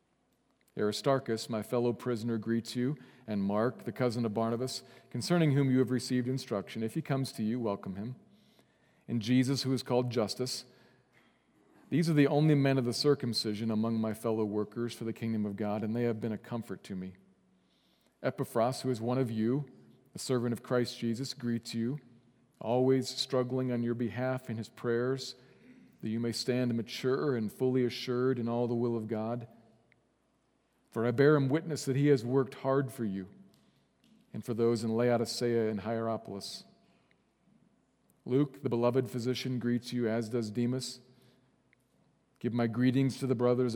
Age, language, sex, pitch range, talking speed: 40-59, English, male, 115-130 Hz, 170 wpm